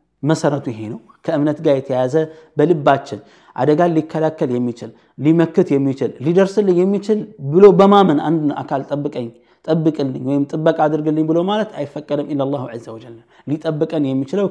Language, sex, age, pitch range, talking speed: Amharic, male, 20-39, 125-160 Hz, 130 wpm